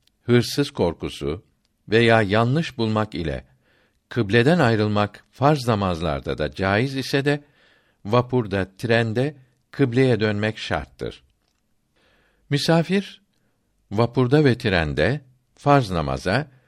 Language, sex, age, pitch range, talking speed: Turkish, male, 60-79, 95-130 Hz, 90 wpm